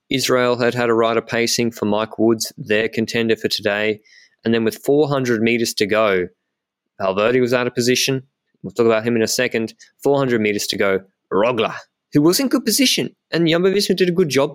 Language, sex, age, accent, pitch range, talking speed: English, male, 20-39, Australian, 105-125 Hz, 200 wpm